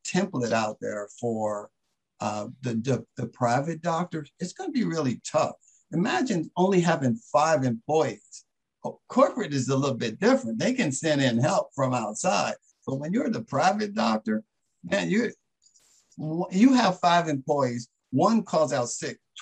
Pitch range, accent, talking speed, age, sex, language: 120-175 Hz, American, 160 wpm, 60-79, male, English